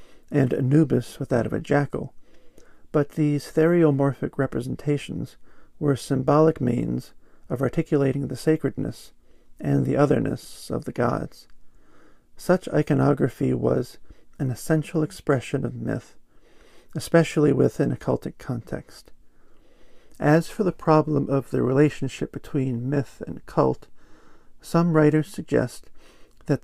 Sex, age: male, 50-69